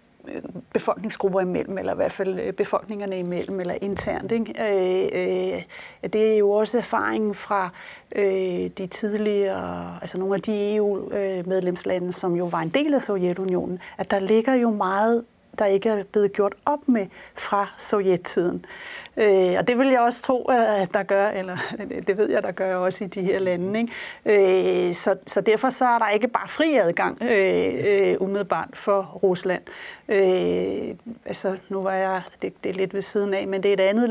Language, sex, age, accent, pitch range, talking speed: Danish, female, 30-49, native, 190-220 Hz, 180 wpm